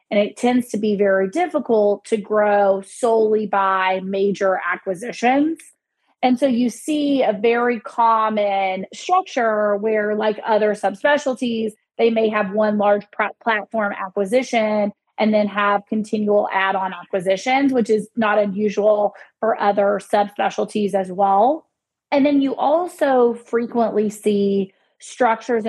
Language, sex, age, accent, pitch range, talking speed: English, female, 20-39, American, 200-235 Hz, 125 wpm